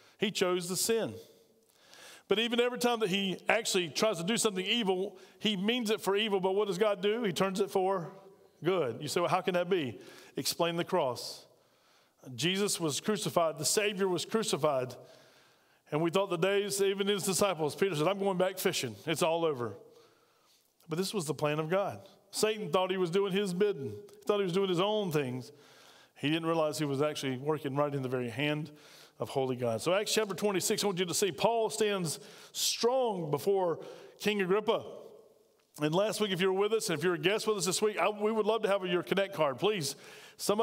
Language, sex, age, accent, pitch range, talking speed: English, male, 40-59, American, 170-210 Hz, 215 wpm